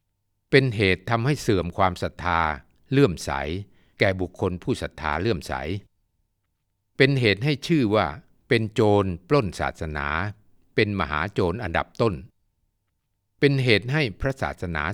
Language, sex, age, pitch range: Thai, male, 60-79, 85-115 Hz